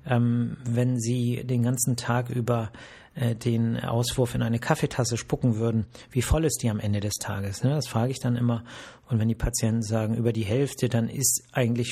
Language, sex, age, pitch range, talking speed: German, male, 40-59, 115-135 Hz, 200 wpm